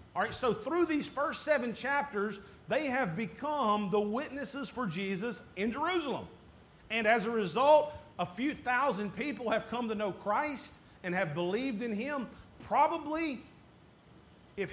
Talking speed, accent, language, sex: 150 wpm, American, English, male